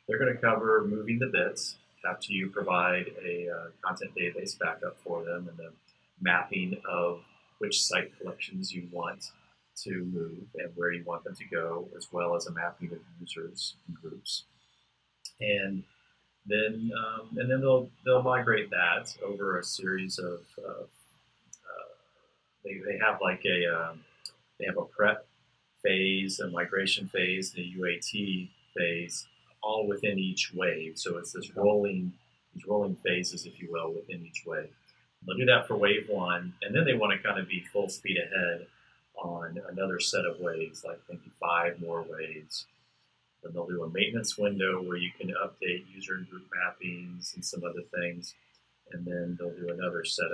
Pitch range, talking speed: 85-105 Hz, 170 wpm